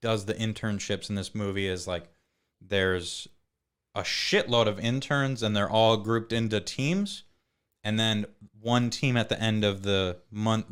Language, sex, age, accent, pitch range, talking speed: English, male, 20-39, American, 95-115 Hz, 160 wpm